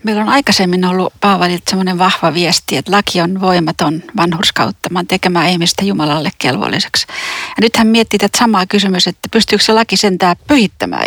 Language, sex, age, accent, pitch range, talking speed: Finnish, female, 40-59, native, 180-210 Hz, 155 wpm